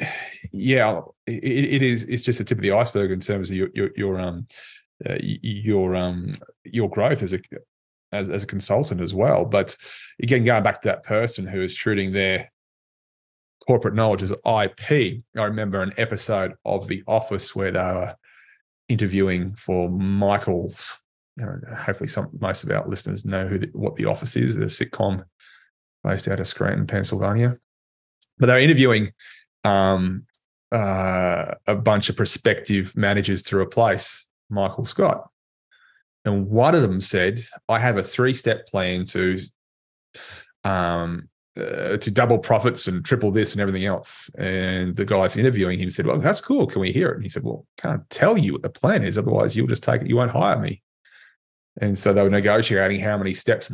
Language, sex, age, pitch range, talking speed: English, male, 20-39, 95-115 Hz, 180 wpm